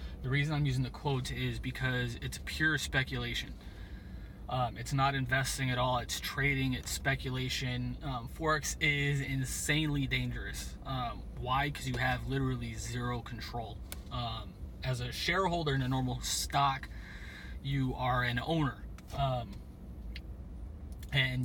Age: 20-39